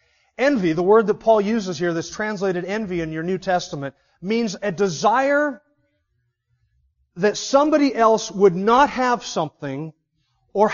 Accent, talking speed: American, 140 wpm